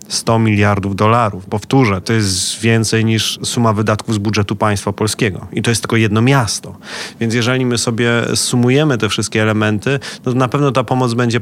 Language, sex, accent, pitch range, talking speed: Polish, male, native, 105-125 Hz, 180 wpm